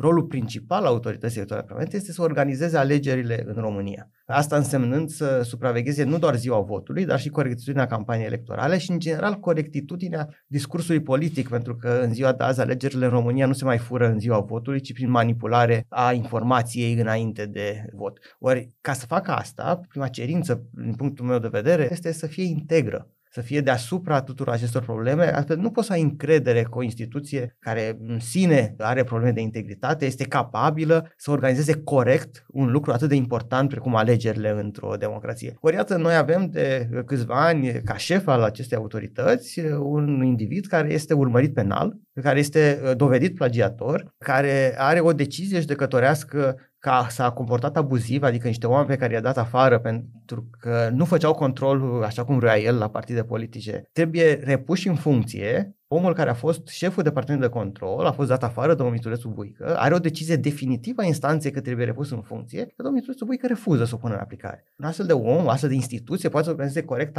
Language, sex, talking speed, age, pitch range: Romanian, male, 185 wpm, 30-49, 120-155 Hz